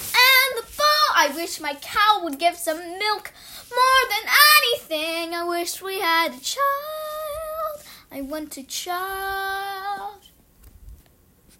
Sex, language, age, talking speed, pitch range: female, English, 10-29, 110 wpm, 265-380 Hz